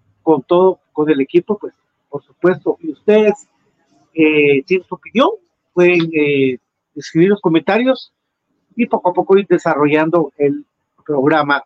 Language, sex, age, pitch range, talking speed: Spanish, male, 50-69, 150-200 Hz, 140 wpm